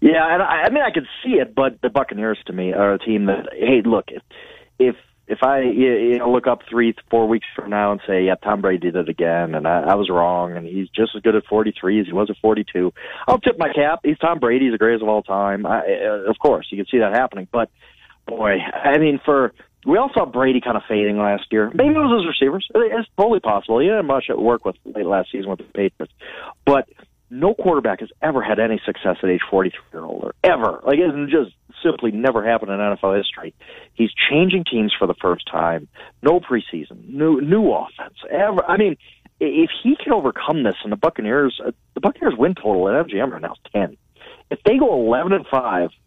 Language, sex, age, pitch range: English, male, 30-49, 105-145 Hz